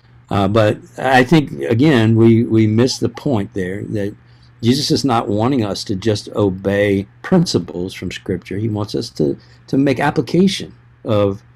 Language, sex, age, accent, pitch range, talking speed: English, male, 60-79, American, 95-120 Hz, 160 wpm